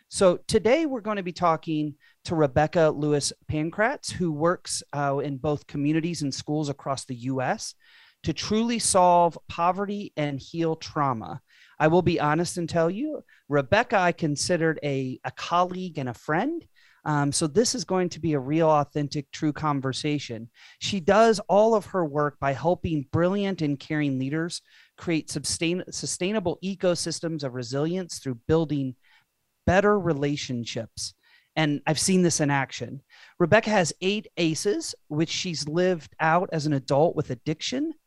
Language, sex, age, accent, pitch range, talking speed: English, male, 40-59, American, 145-180 Hz, 155 wpm